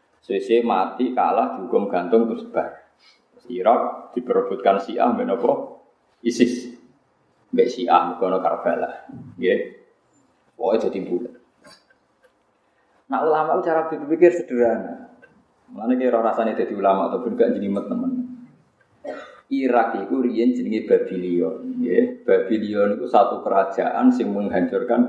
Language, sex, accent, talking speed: Indonesian, male, native, 105 wpm